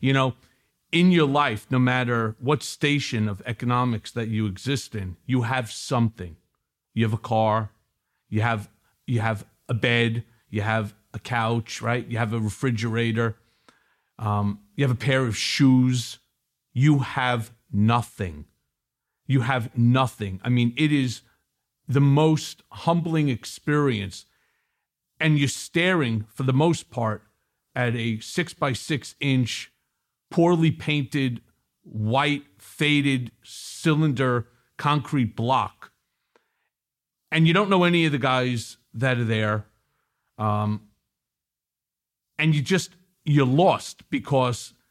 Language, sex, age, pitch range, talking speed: English, male, 50-69, 110-145 Hz, 125 wpm